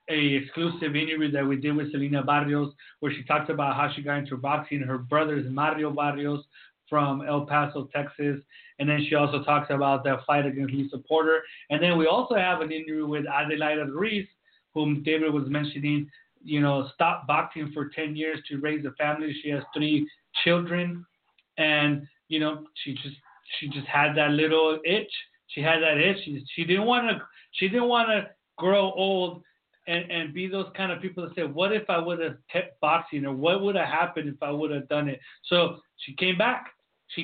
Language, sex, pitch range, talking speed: English, male, 145-165 Hz, 200 wpm